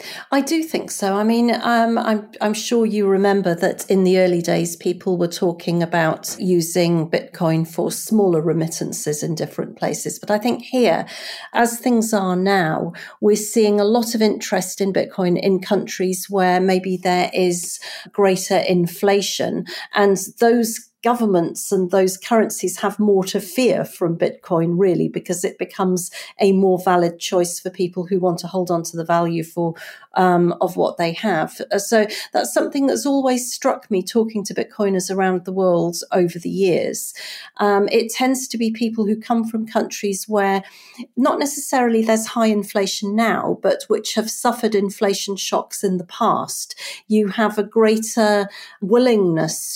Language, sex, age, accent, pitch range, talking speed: English, female, 40-59, British, 180-215 Hz, 165 wpm